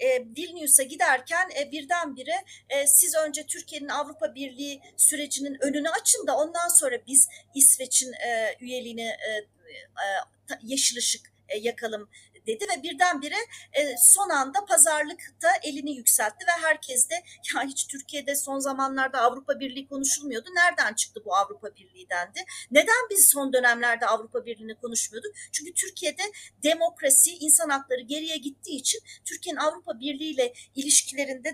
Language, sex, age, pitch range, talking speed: Turkish, female, 40-59, 270-350 Hz, 135 wpm